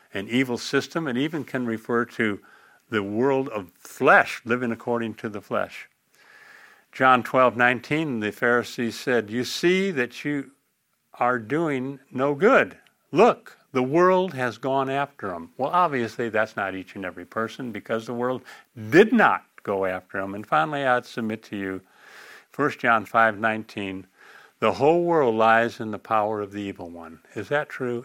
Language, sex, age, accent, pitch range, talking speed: English, male, 50-69, American, 110-135 Hz, 165 wpm